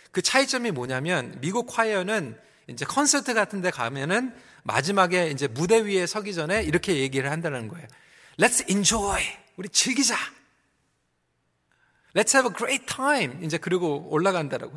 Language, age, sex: Korean, 40-59, male